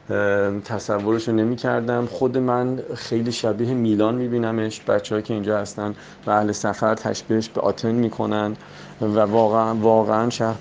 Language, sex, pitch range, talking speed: Persian, male, 100-115 Hz, 140 wpm